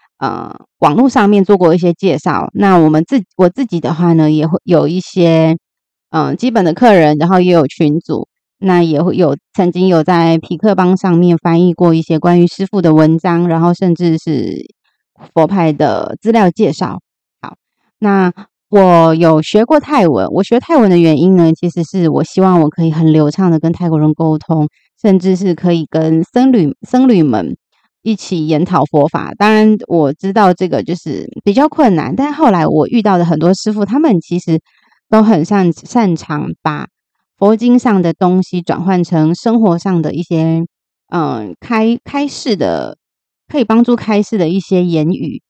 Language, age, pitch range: Chinese, 20-39, 165-205 Hz